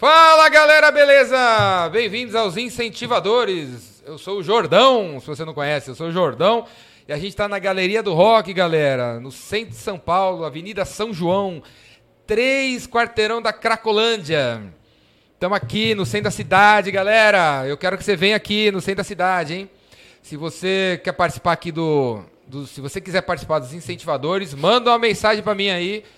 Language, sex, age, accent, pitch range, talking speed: Portuguese, male, 30-49, Brazilian, 150-210 Hz, 175 wpm